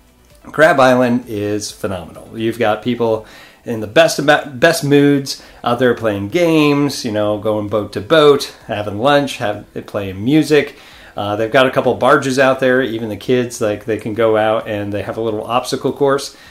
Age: 40-59